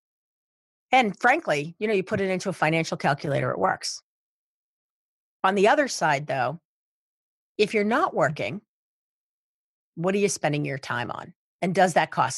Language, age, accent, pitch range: English, 40-59, American, 145-185 Hz